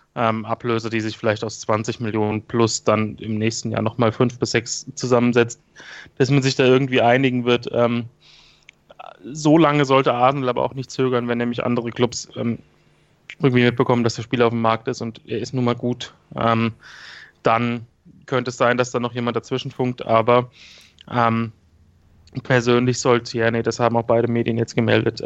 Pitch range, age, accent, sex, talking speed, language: 115-130 Hz, 30-49, German, male, 185 wpm, German